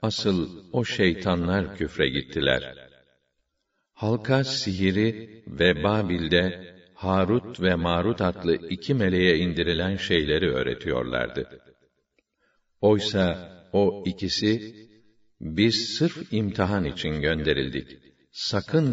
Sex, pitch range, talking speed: male, 90-105 Hz, 85 wpm